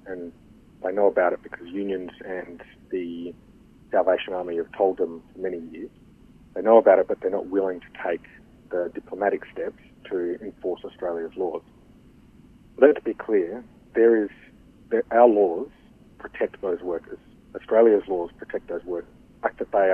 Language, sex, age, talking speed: English, male, 40-59, 165 wpm